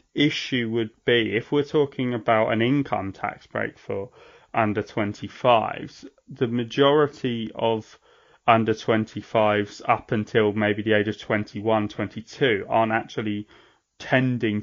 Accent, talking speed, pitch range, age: British, 125 wpm, 105-120 Hz, 20-39